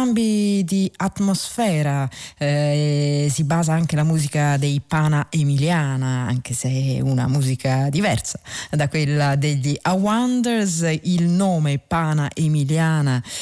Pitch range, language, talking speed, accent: 140-170 Hz, Italian, 110 wpm, native